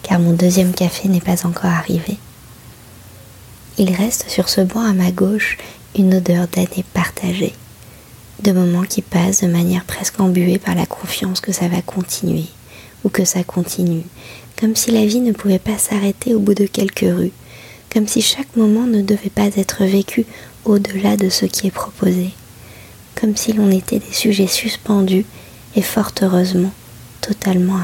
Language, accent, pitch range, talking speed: French, French, 120-200 Hz, 170 wpm